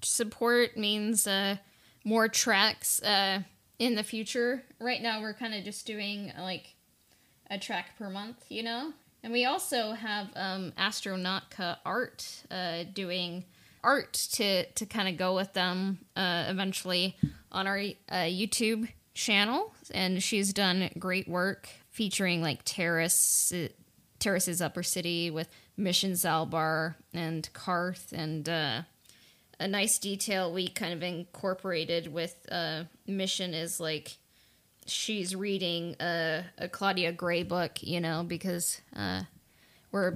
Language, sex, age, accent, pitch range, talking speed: English, female, 10-29, American, 175-205 Hz, 135 wpm